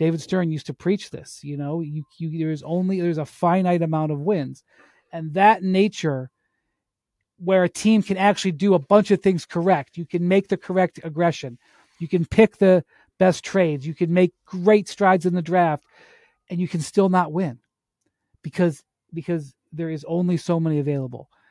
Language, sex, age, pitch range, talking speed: English, male, 40-59, 145-180 Hz, 185 wpm